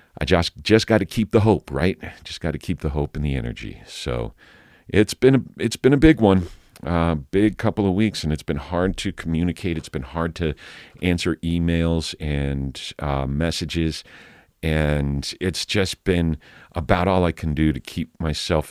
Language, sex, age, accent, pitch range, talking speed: English, male, 50-69, American, 70-90 Hz, 190 wpm